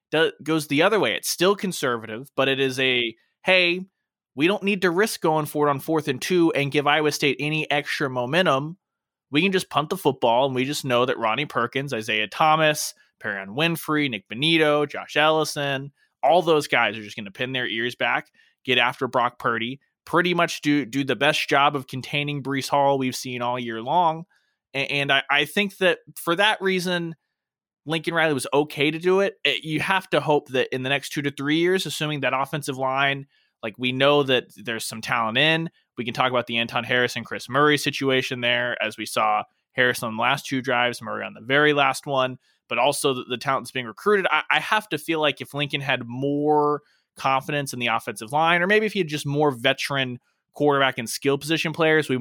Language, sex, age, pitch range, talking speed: English, male, 20-39, 125-155 Hz, 210 wpm